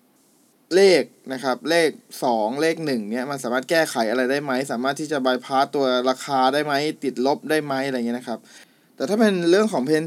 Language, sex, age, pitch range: Thai, male, 20-39, 125-155 Hz